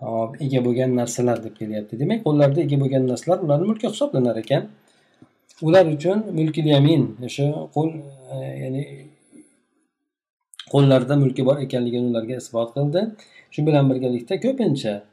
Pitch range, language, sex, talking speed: 115-155 Hz, Russian, male, 105 wpm